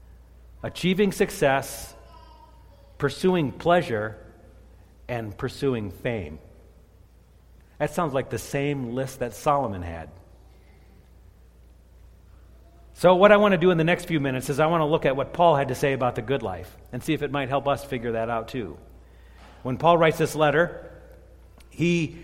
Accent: American